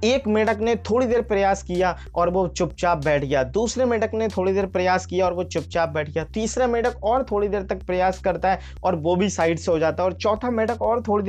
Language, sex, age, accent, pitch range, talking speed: Hindi, male, 20-39, native, 180-225 Hz, 240 wpm